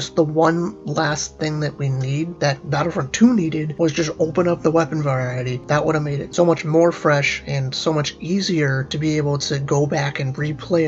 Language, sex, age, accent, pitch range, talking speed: English, male, 30-49, American, 145-170 Hz, 215 wpm